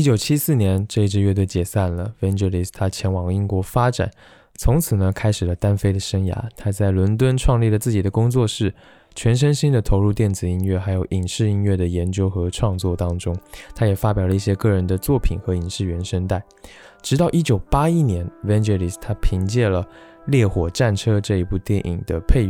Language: Chinese